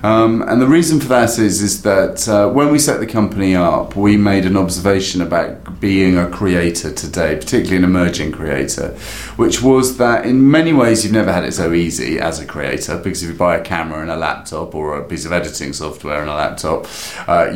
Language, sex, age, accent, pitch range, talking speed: English, male, 30-49, British, 85-115 Hz, 215 wpm